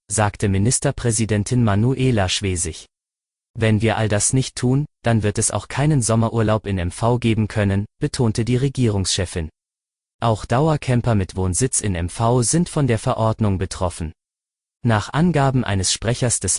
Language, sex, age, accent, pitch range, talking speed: German, male, 30-49, German, 100-125 Hz, 140 wpm